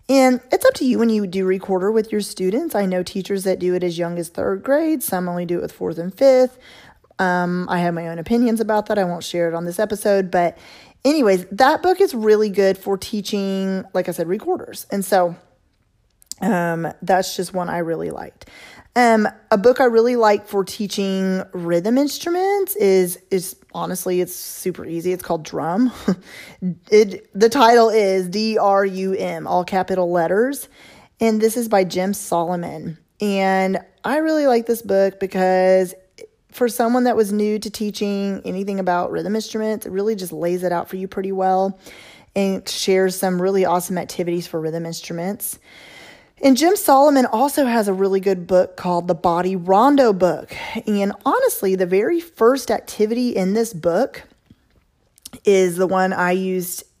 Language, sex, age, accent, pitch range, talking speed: English, female, 20-39, American, 180-225 Hz, 175 wpm